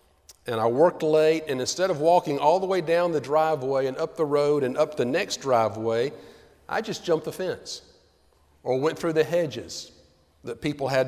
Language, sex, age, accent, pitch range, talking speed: English, male, 40-59, American, 105-160 Hz, 195 wpm